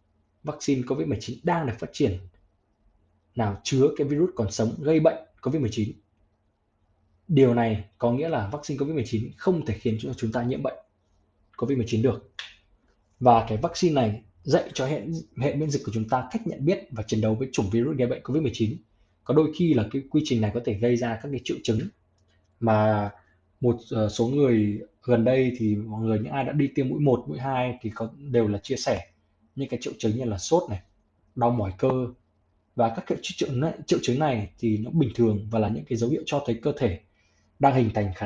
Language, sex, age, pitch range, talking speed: Vietnamese, male, 20-39, 105-140 Hz, 205 wpm